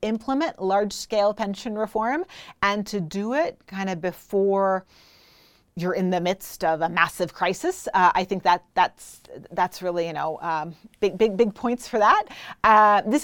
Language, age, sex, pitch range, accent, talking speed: English, 30-49, female, 170-215 Hz, American, 170 wpm